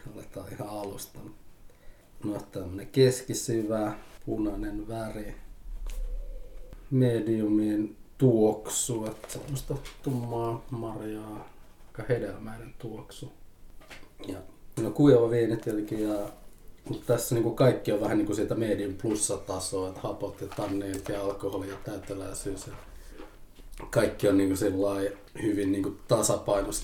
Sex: male